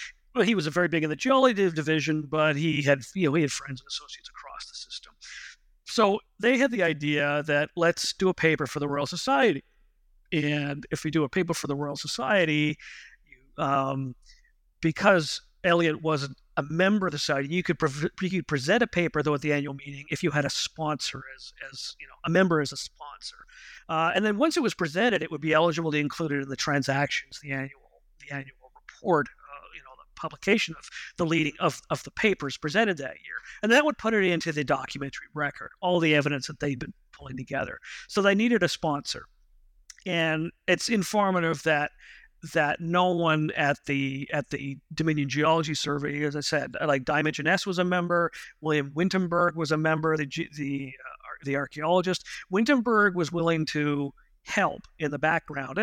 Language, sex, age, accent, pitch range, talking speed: English, male, 50-69, American, 145-175 Hz, 190 wpm